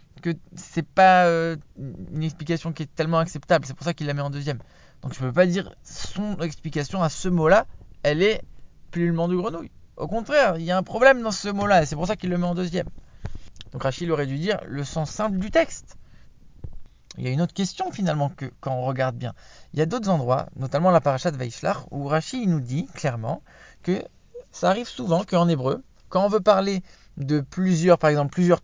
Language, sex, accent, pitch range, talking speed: English, male, French, 155-195 Hz, 225 wpm